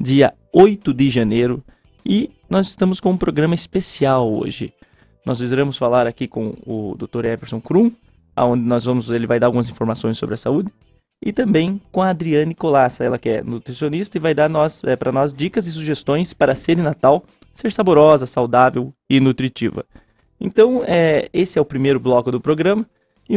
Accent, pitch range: Brazilian, 125-185 Hz